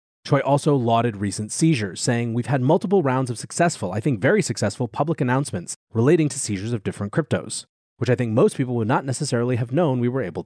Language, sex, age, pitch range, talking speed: English, male, 30-49, 115-155 Hz, 210 wpm